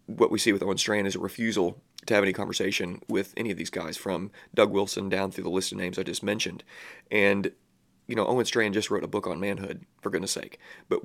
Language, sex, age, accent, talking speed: English, male, 30-49, American, 245 wpm